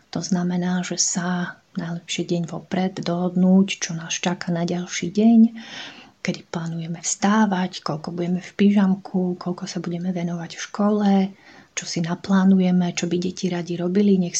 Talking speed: 150 wpm